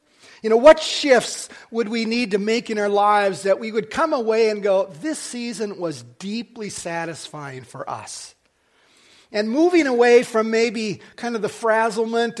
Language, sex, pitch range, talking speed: English, male, 195-245 Hz, 170 wpm